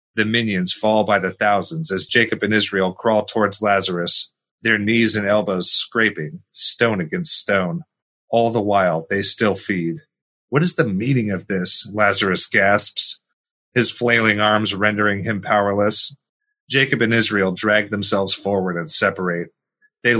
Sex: male